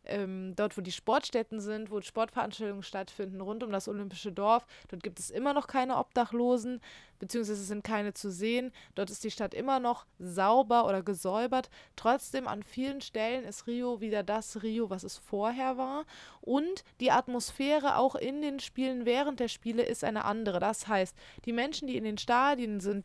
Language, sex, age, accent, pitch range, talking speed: German, female, 20-39, German, 210-260 Hz, 180 wpm